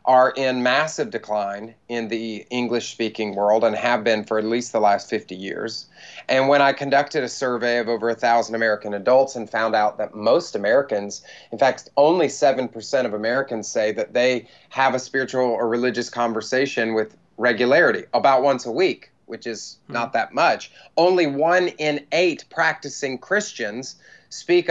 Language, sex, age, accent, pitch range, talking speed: English, male, 30-49, American, 120-150 Hz, 170 wpm